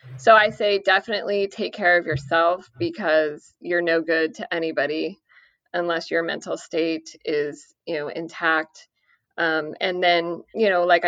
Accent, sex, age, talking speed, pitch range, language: American, female, 20-39, 150 wpm, 165-185 Hz, English